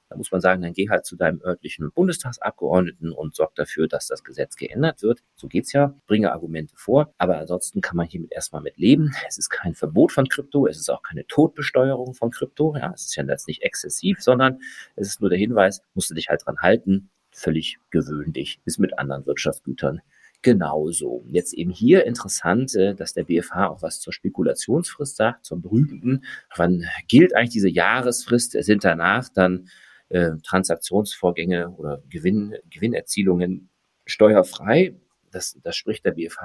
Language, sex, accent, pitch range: German, male, German, 90-140 Hz